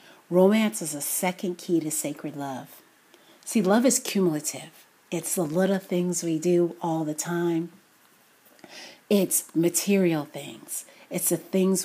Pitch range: 160-210 Hz